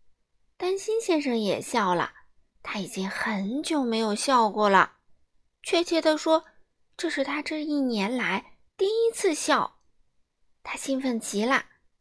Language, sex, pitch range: Chinese, female, 205-275 Hz